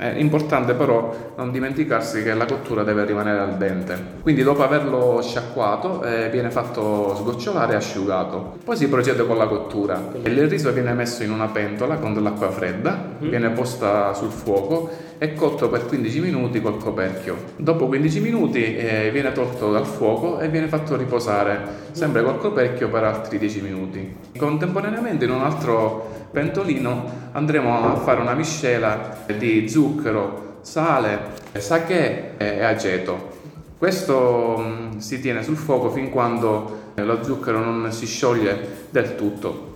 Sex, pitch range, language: male, 110-140 Hz, Italian